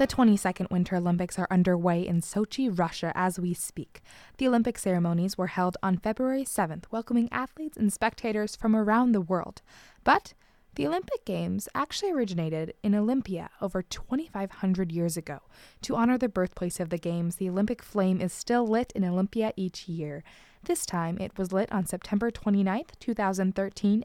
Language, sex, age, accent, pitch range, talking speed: English, female, 20-39, American, 185-235 Hz, 165 wpm